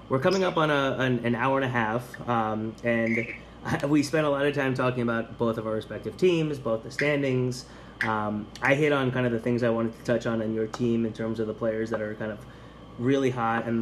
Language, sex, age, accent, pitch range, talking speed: English, male, 20-39, American, 110-125 Hz, 250 wpm